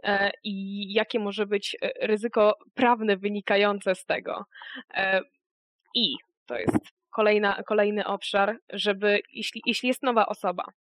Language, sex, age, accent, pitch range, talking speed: Polish, female, 20-39, native, 200-225 Hz, 115 wpm